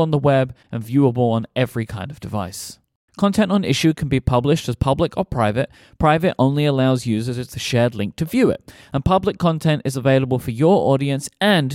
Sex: male